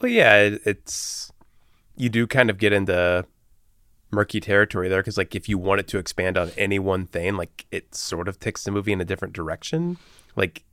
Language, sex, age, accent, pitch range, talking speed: English, male, 20-39, American, 95-120 Hz, 205 wpm